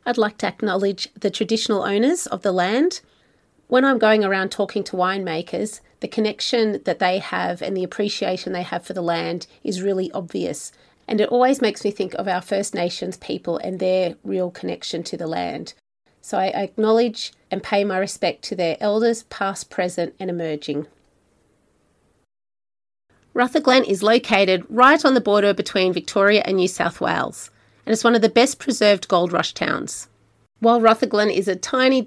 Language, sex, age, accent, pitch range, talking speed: English, female, 30-49, Australian, 180-225 Hz, 175 wpm